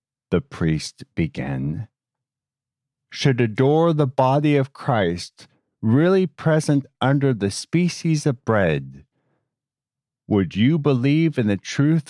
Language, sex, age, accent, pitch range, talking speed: English, male, 50-69, American, 115-145 Hz, 110 wpm